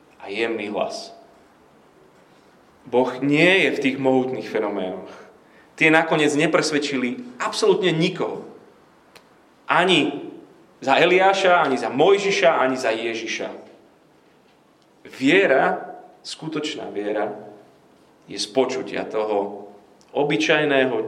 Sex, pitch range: male, 125-180 Hz